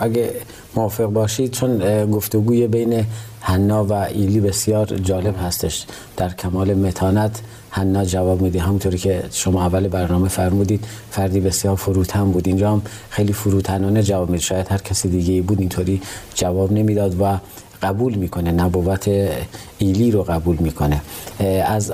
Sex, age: male, 40-59